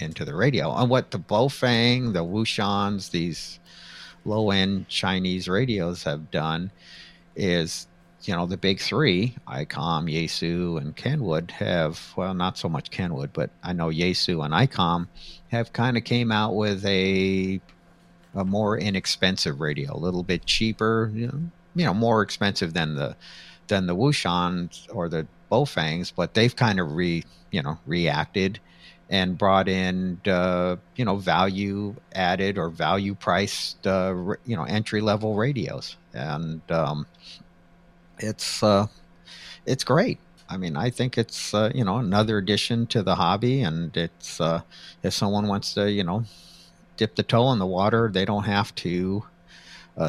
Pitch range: 85-105 Hz